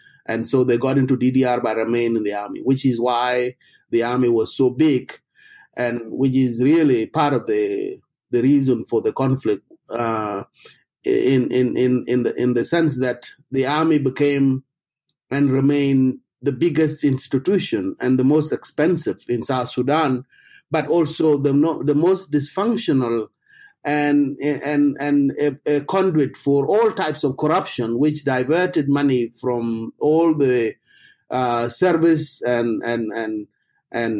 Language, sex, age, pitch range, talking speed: English, male, 30-49, 125-160 Hz, 150 wpm